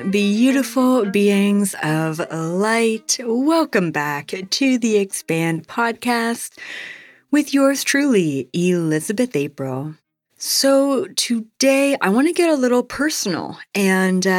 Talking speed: 105 wpm